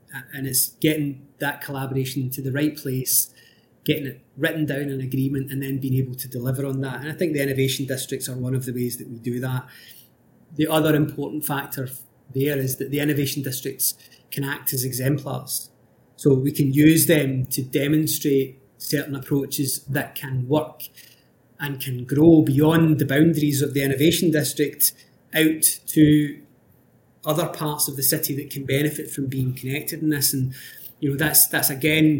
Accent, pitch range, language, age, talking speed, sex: British, 130-150 Hz, English, 30-49, 175 wpm, male